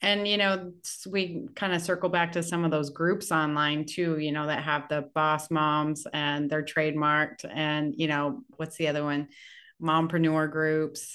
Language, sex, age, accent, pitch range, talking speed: English, female, 30-49, American, 155-195 Hz, 185 wpm